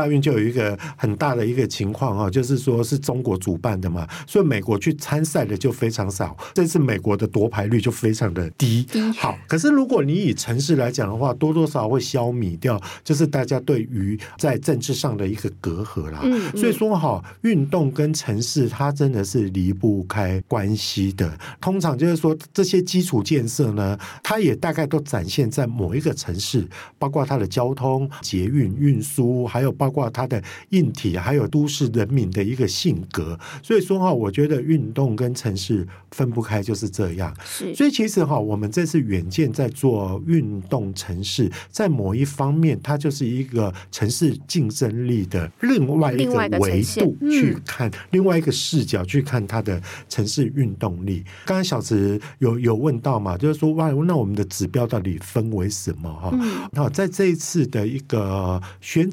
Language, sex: Chinese, male